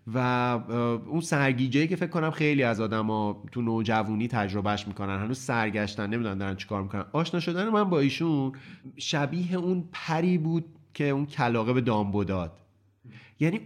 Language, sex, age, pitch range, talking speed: Persian, male, 30-49, 110-145 Hz, 165 wpm